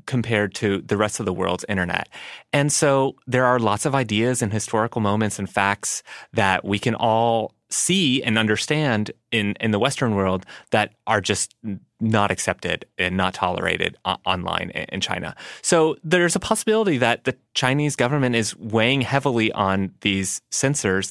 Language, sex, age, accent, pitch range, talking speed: English, male, 30-49, American, 100-125 Hz, 160 wpm